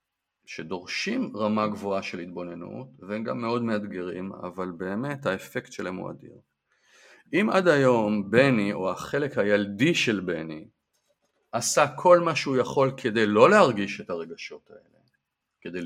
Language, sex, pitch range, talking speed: Hebrew, male, 90-125 Hz, 135 wpm